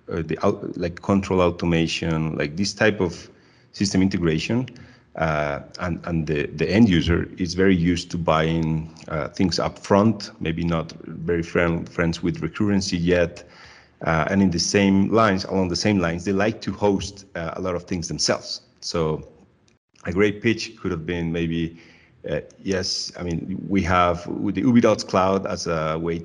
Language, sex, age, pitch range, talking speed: English, male, 40-59, 80-95 Hz, 175 wpm